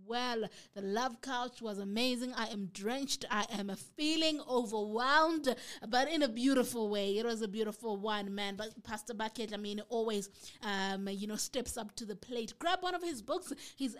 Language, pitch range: English, 205-255 Hz